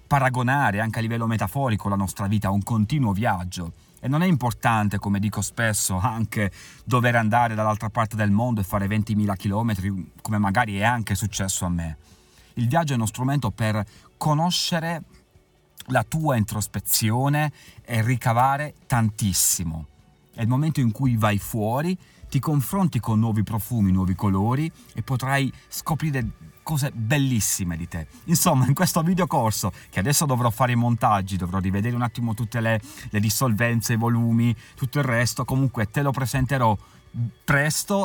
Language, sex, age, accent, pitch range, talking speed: Italian, male, 30-49, native, 105-135 Hz, 160 wpm